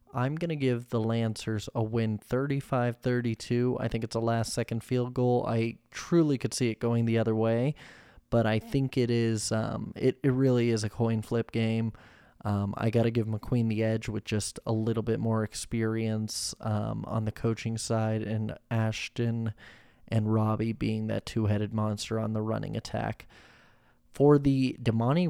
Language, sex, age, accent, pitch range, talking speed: English, male, 20-39, American, 110-125 Hz, 175 wpm